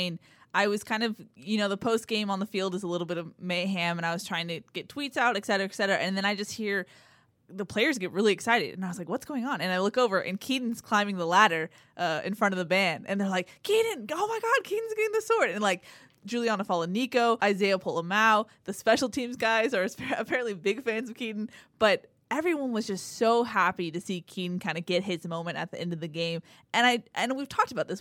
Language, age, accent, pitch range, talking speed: English, 20-39, American, 175-220 Hz, 250 wpm